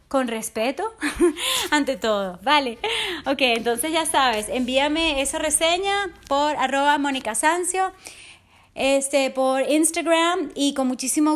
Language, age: English, 30-49